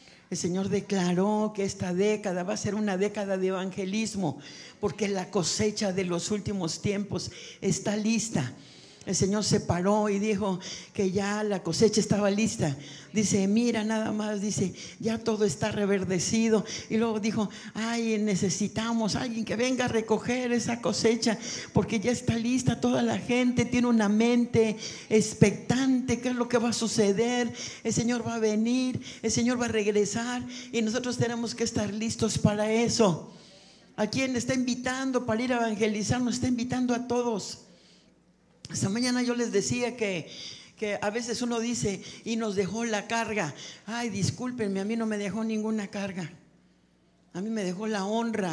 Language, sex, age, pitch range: Spanish, male, 50-69, 200-230 Hz